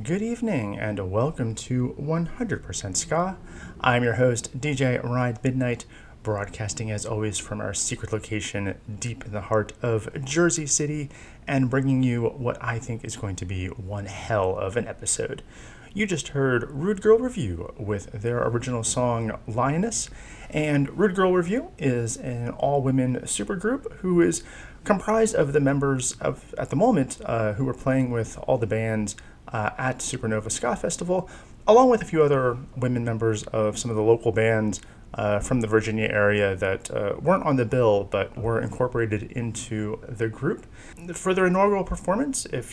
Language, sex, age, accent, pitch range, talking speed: English, male, 30-49, American, 110-150 Hz, 165 wpm